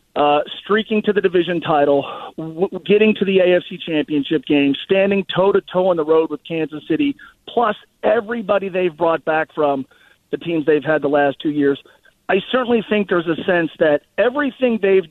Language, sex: English, male